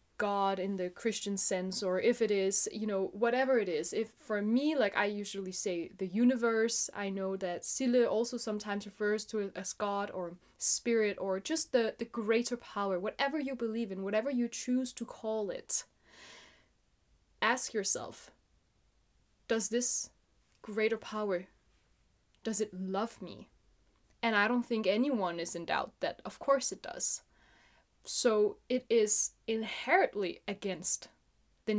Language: English